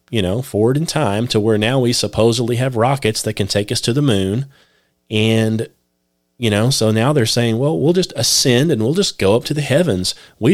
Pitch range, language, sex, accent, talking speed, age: 105-130 Hz, English, male, American, 220 wpm, 30-49